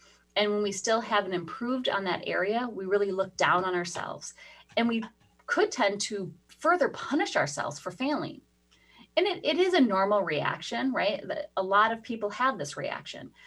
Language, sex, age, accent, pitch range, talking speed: English, female, 30-49, American, 155-210 Hz, 180 wpm